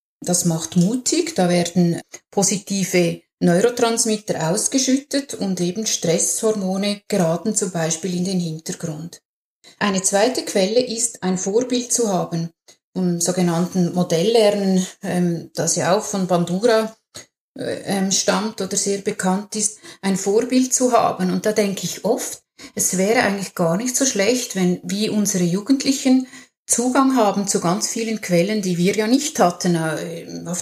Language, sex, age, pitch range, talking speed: German, female, 30-49, 180-230 Hz, 135 wpm